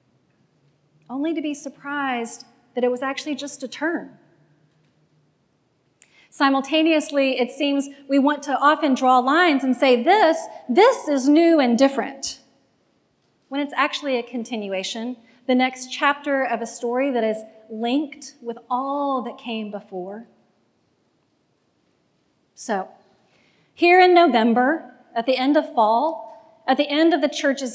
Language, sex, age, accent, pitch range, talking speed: English, female, 30-49, American, 230-285 Hz, 135 wpm